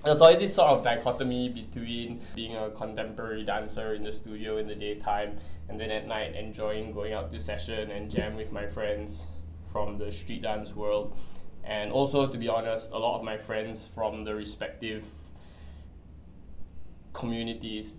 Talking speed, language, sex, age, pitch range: 170 wpm, English, male, 20-39, 105-120 Hz